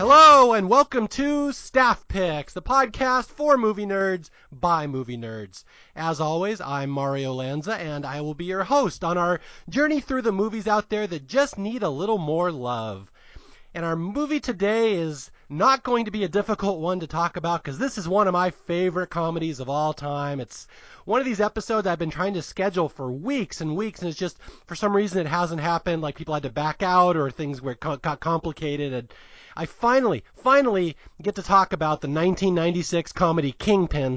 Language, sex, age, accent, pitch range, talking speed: English, male, 30-49, American, 140-200 Hz, 195 wpm